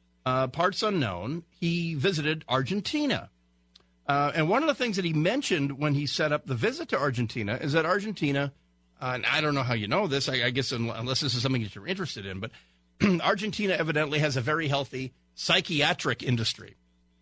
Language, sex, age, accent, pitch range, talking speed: English, male, 50-69, American, 120-165 Hz, 190 wpm